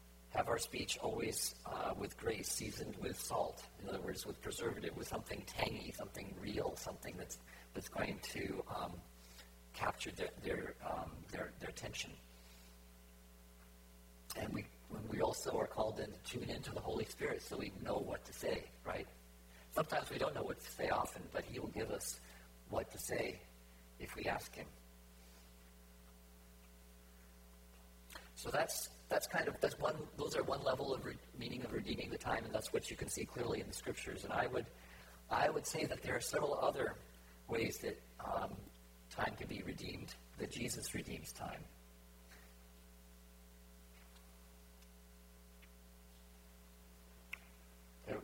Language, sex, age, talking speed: English, male, 50-69, 155 wpm